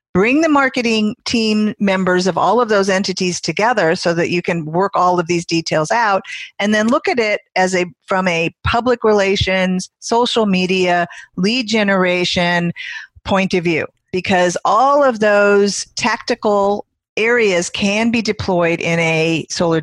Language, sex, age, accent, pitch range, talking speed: English, female, 40-59, American, 175-215 Hz, 155 wpm